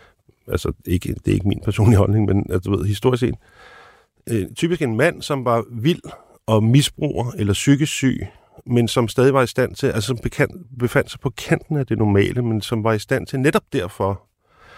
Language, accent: Danish, native